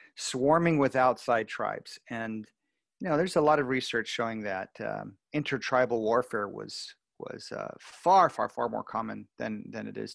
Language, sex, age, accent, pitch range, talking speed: English, male, 40-59, American, 115-140 Hz, 170 wpm